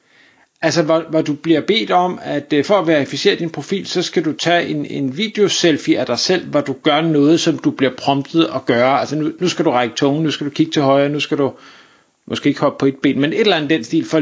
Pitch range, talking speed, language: 145-190 Hz, 260 wpm, Danish